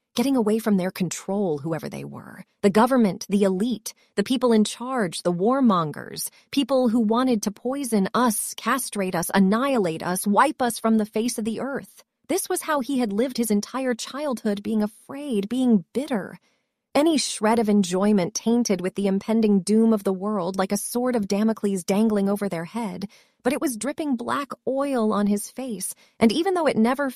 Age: 30-49